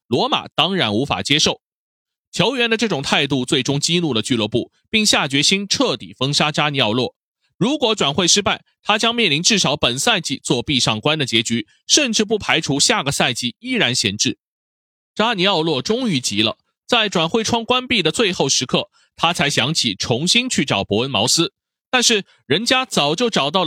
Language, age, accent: Chinese, 30-49, native